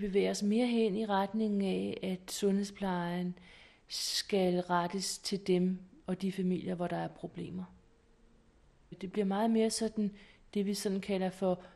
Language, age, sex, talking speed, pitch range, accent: Danish, 30-49, female, 155 wpm, 185-215 Hz, native